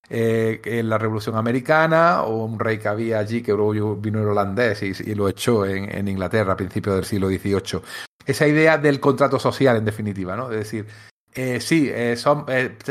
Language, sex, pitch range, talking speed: Spanish, male, 110-140 Hz, 195 wpm